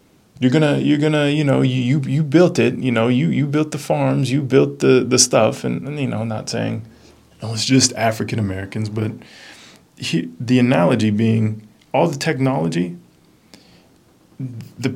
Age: 30-49